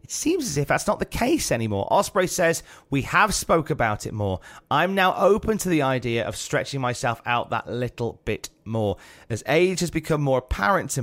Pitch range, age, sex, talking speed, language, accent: 115-160 Hz, 30-49, male, 205 wpm, English, British